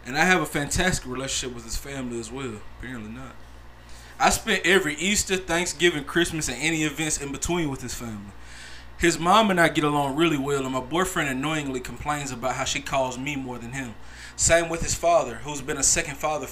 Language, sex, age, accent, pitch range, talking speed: English, male, 20-39, American, 115-150 Hz, 205 wpm